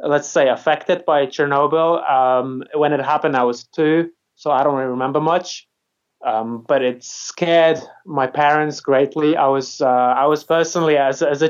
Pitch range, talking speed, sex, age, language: 125-150 Hz, 175 wpm, male, 20-39, English